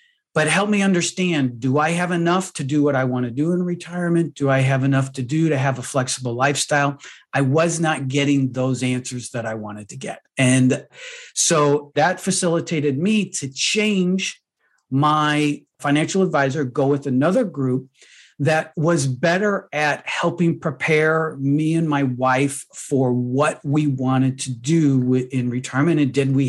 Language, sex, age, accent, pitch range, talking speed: English, male, 40-59, American, 130-170 Hz, 170 wpm